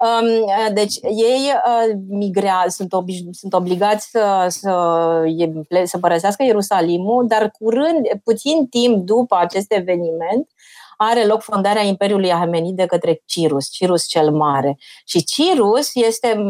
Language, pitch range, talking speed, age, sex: Romanian, 175-220 Hz, 120 wpm, 30-49, female